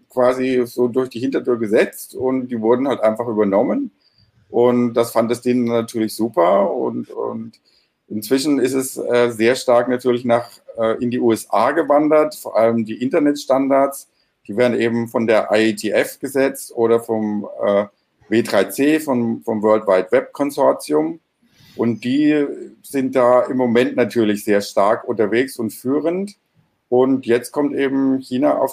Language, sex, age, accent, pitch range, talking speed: German, male, 50-69, German, 110-130 Hz, 155 wpm